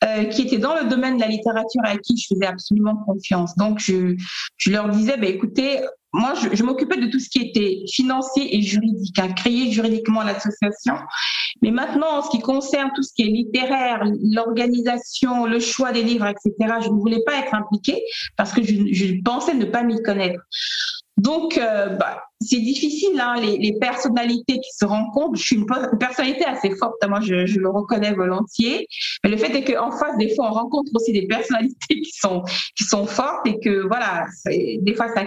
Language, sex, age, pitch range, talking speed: French, female, 50-69, 205-255 Hz, 205 wpm